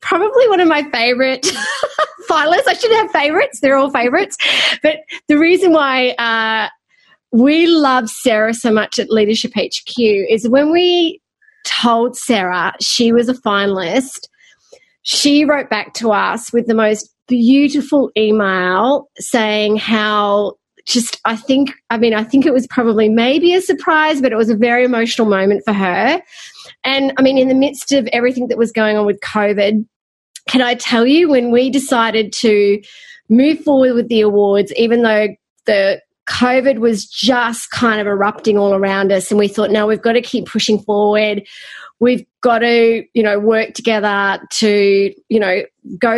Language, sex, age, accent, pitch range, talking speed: English, female, 30-49, Australian, 210-260 Hz, 170 wpm